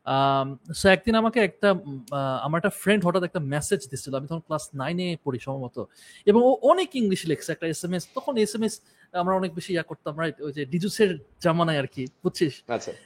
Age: 30-49